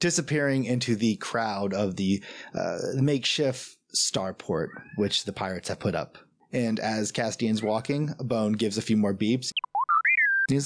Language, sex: English, male